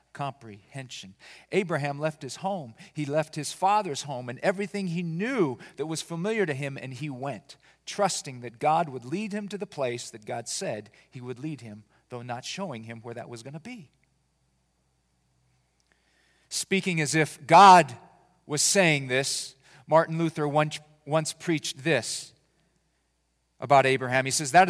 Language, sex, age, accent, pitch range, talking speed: English, male, 40-59, American, 120-165 Hz, 160 wpm